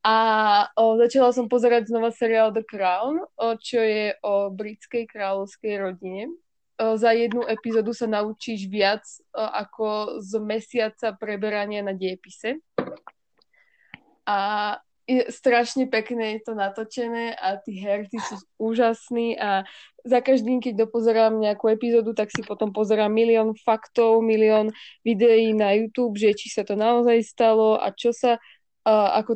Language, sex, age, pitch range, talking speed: Slovak, female, 20-39, 205-235 Hz, 140 wpm